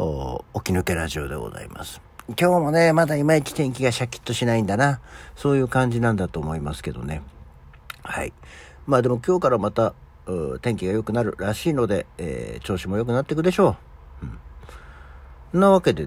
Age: 60-79